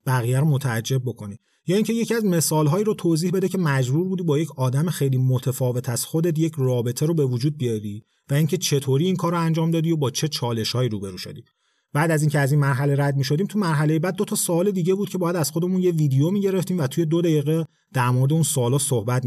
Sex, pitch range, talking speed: male, 130-170 Hz, 240 wpm